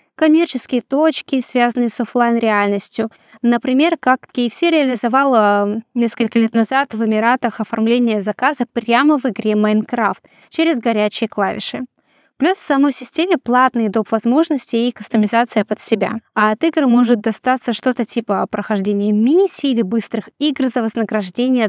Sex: female